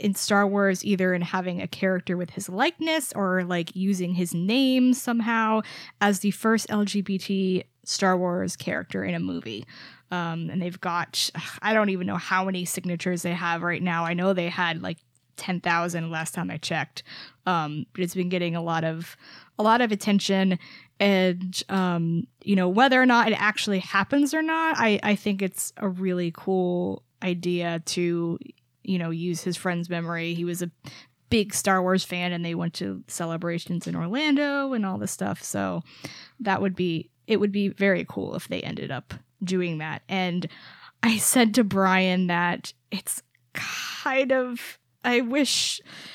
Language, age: English, 20-39